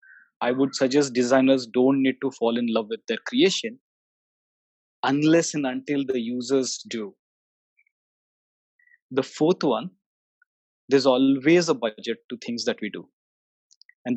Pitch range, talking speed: 125-165 Hz, 135 wpm